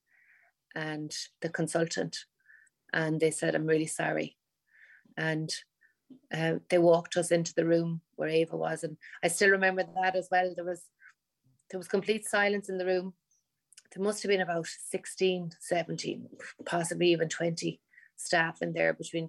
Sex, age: female, 30-49